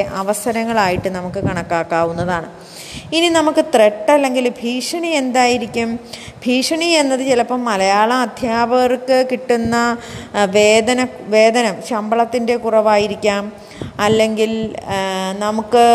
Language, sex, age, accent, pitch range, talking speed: Malayalam, female, 20-39, native, 210-250 Hz, 70 wpm